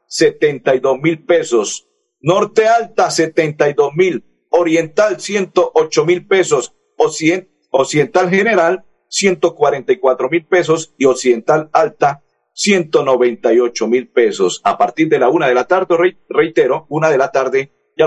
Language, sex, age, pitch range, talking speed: Spanish, male, 50-69, 125-205 Hz, 125 wpm